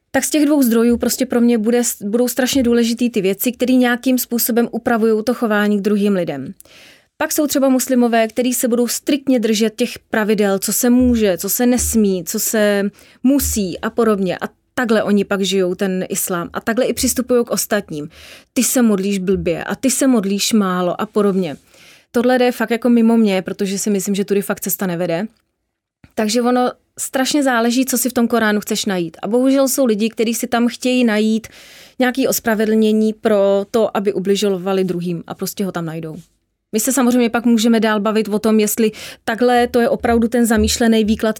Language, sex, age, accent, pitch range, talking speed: Czech, female, 30-49, native, 200-245 Hz, 190 wpm